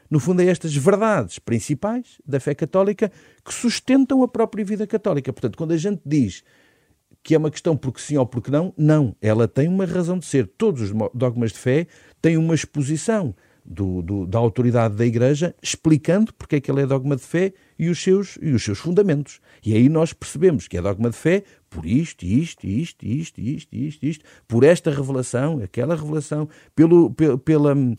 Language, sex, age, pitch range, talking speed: Portuguese, male, 50-69, 115-165 Hz, 185 wpm